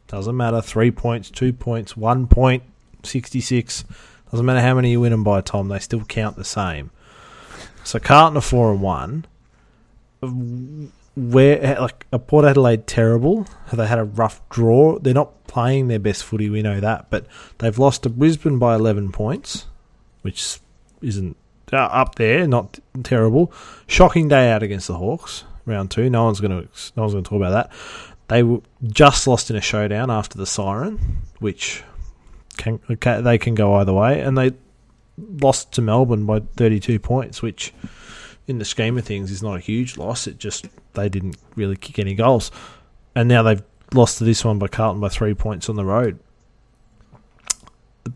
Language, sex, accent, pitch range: English, male, Australian, 105-125 Hz